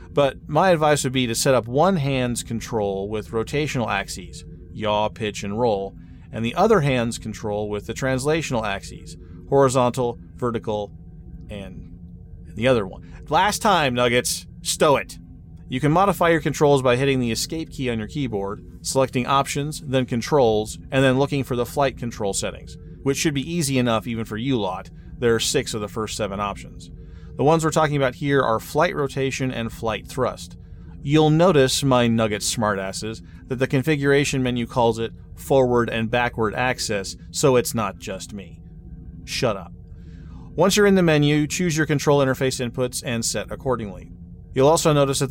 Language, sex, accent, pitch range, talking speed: English, male, American, 105-140 Hz, 175 wpm